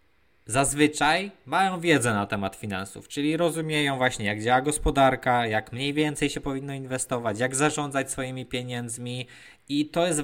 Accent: native